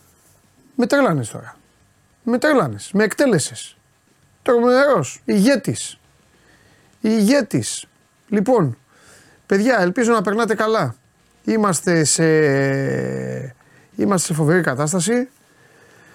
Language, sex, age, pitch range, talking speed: Greek, male, 30-49, 140-195 Hz, 80 wpm